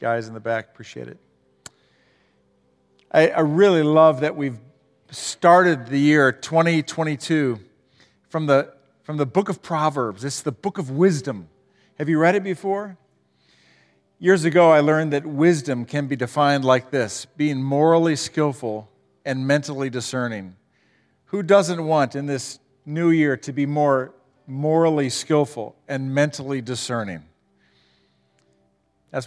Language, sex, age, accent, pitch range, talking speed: English, male, 50-69, American, 120-160 Hz, 135 wpm